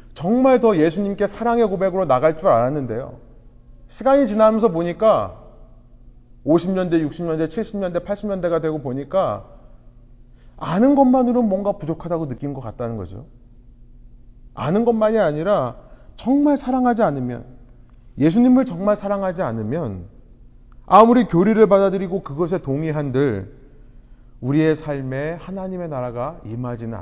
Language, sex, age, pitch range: Korean, male, 30-49, 120-190 Hz